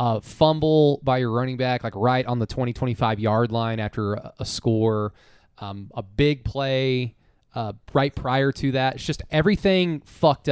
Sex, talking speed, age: male, 170 wpm, 20-39